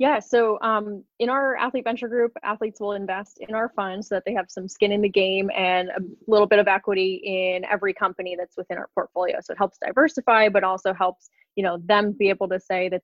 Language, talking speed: English, 235 wpm